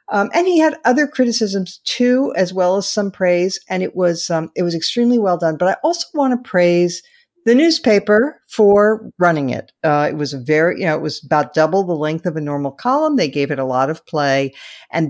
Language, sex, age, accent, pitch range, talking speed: English, female, 50-69, American, 150-210 Hz, 225 wpm